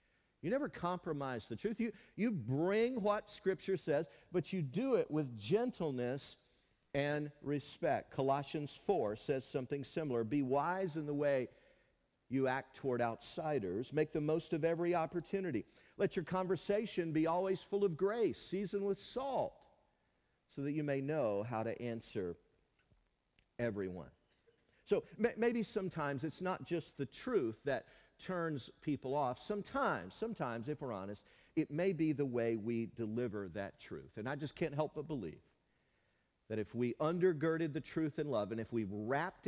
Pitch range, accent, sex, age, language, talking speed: 125-190 Hz, American, male, 50-69, English, 160 wpm